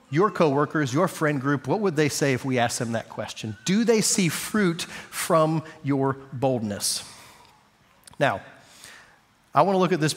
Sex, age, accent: male, 40-59, American